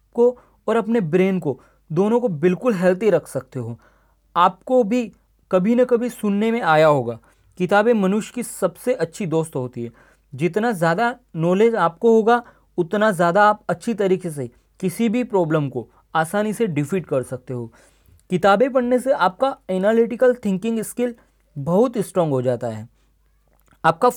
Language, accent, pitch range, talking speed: Hindi, native, 170-230 Hz, 155 wpm